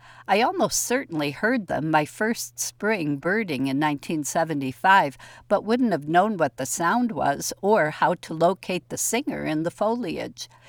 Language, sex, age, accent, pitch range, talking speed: English, female, 60-79, American, 150-210 Hz, 155 wpm